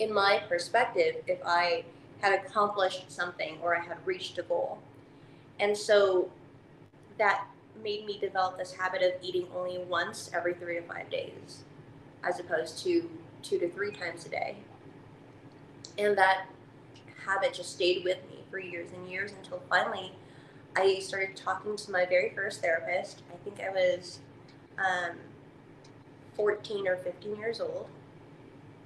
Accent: American